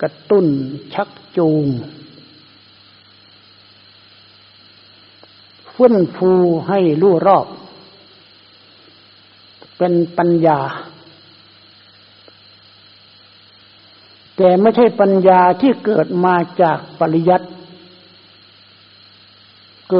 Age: 60-79